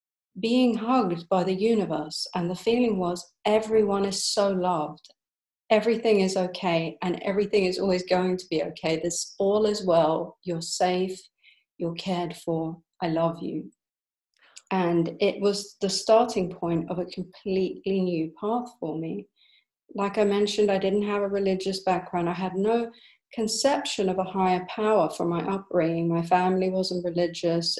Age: 40-59